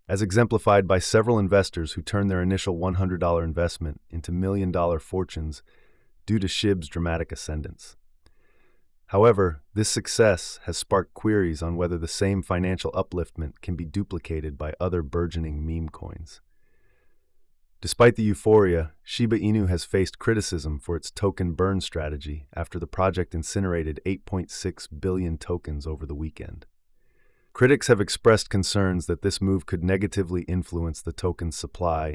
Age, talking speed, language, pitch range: 30-49, 140 wpm, English, 80-95 Hz